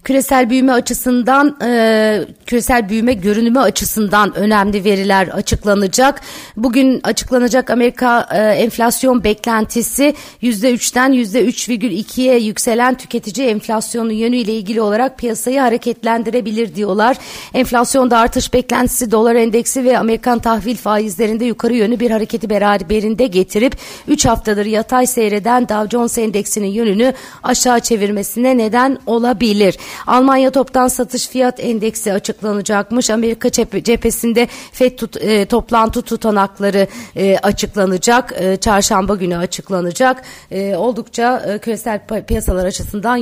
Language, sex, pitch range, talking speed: Turkish, female, 210-250 Hz, 120 wpm